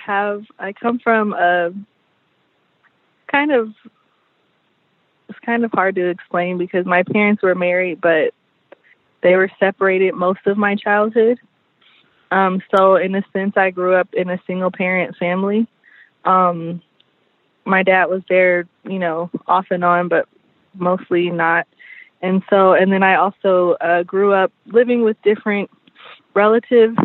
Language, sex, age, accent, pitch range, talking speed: English, female, 20-39, American, 175-205 Hz, 145 wpm